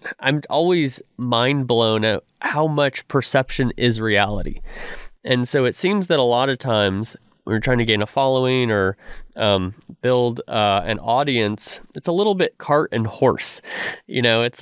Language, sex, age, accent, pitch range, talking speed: English, male, 20-39, American, 115-145 Hz, 170 wpm